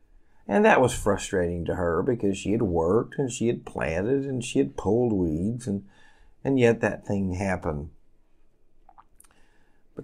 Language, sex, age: English, male, 50-69